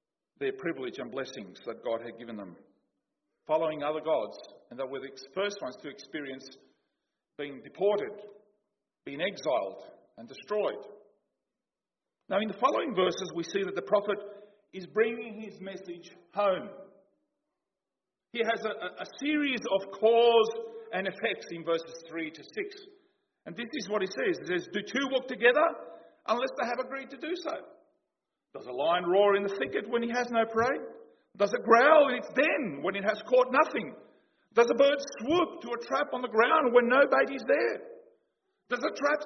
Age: 50-69